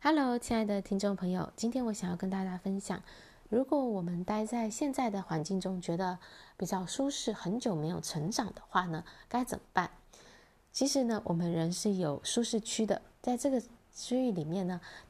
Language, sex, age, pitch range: Chinese, female, 20-39, 175-230 Hz